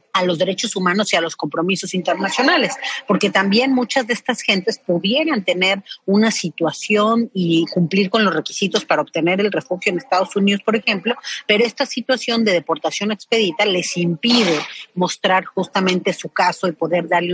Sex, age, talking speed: female, 40-59, 165 wpm